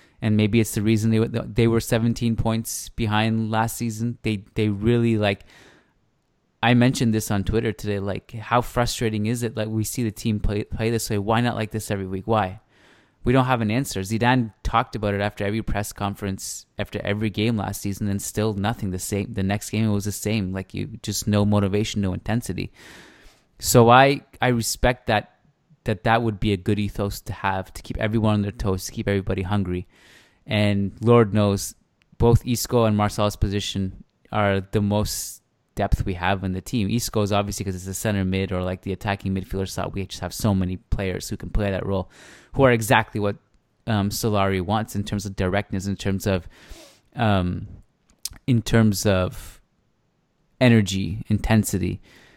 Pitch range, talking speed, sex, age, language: 100-115 Hz, 190 wpm, male, 20-39, English